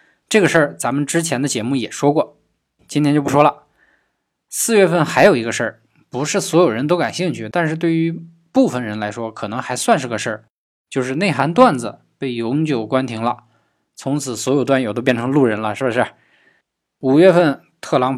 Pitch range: 125-170 Hz